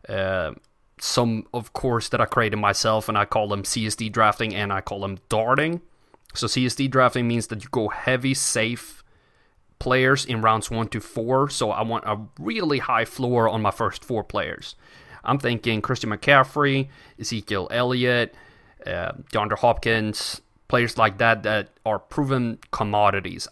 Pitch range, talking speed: 105-130 Hz, 160 wpm